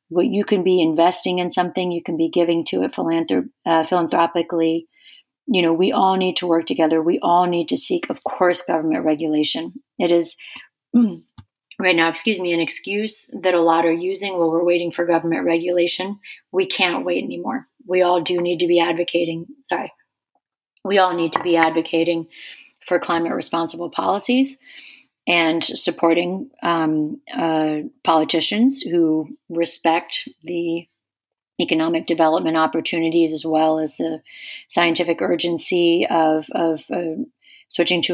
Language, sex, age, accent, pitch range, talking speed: English, female, 30-49, American, 165-190 Hz, 150 wpm